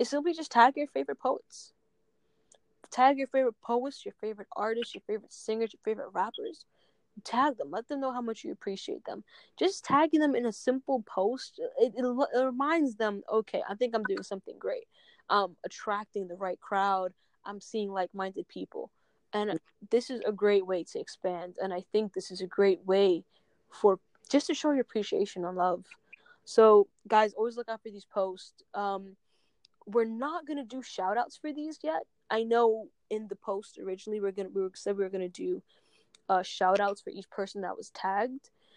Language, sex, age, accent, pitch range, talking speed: English, female, 10-29, American, 195-275 Hz, 195 wpm